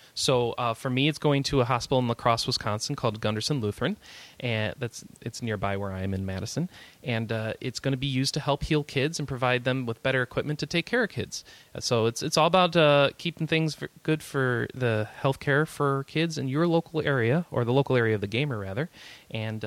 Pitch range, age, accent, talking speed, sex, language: 115-155 Hz, 30-49, American, 230 wpm, male, English